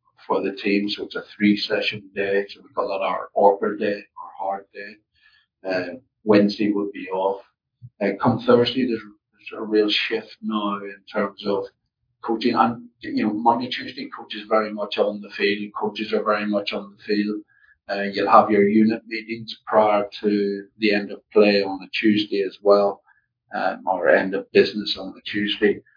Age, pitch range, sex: 50-69, 100-115 Hz, male